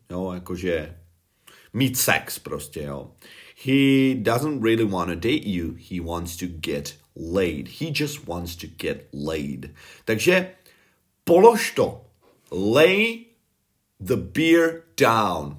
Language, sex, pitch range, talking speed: Czech, male, 90-135 Hz, 120 wpm